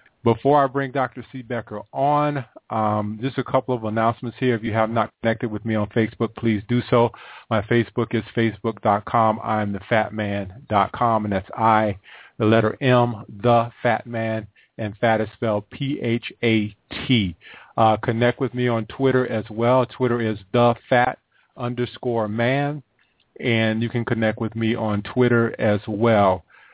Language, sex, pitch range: English, male, 105-120 Hz